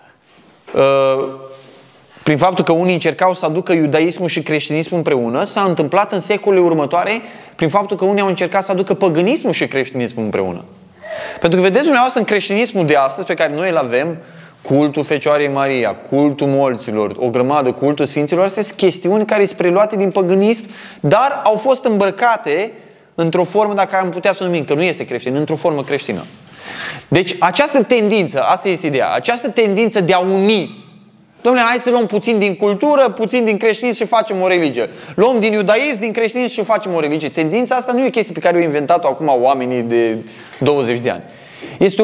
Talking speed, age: 185 wpm, 20-39